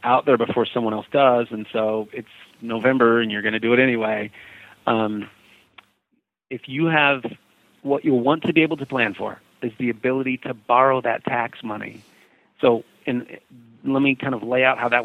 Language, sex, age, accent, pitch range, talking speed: English, male, 40-59, American, 115-130 Hz, 190 wpm